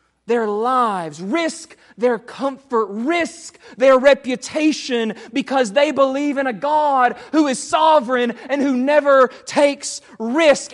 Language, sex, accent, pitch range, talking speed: English, male, American, 210-275 Hz, 125 wpm